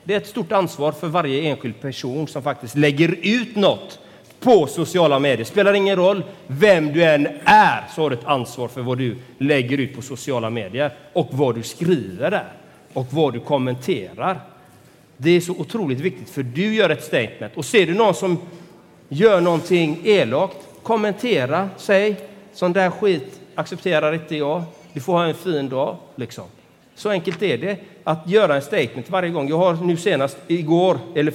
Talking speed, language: 185 wpm, Swedish